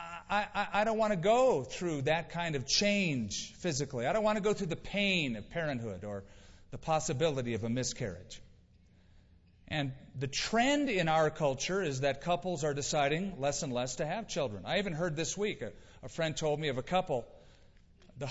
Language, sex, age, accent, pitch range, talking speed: English, male, 40-59, American, 115-185 Hz, 195 wpm